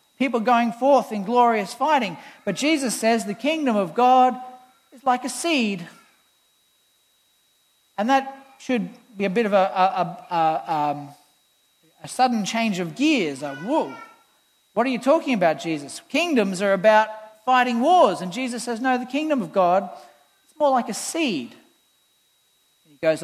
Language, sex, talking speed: English, male, 155 wpm